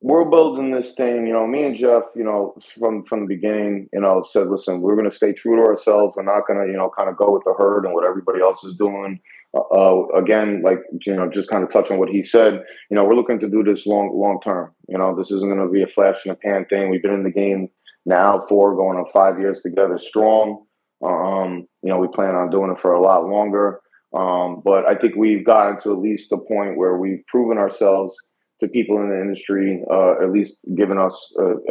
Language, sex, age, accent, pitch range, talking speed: English, male, 30-49, American, 95-110 Hz, 245 wpm